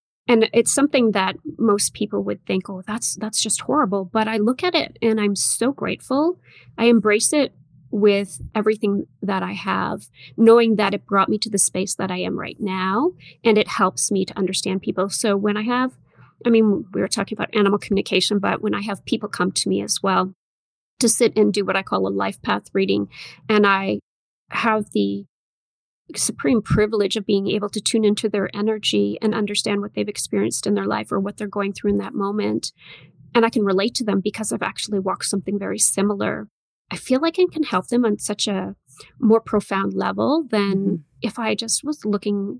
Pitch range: 195-225 Hz